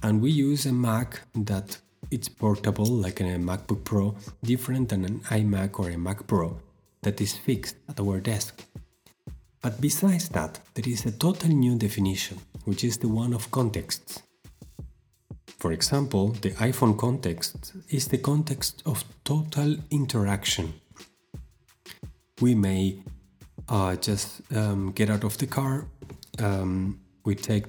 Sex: male